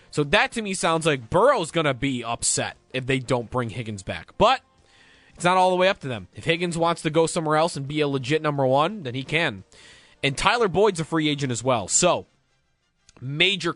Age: 20-39